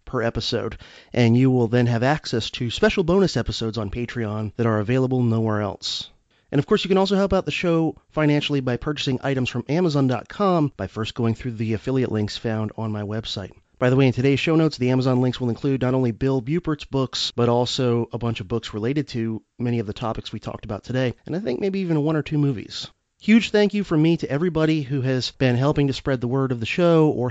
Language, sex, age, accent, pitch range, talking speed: English, male, 30-49, American, 115-145 Hz, 235 wpm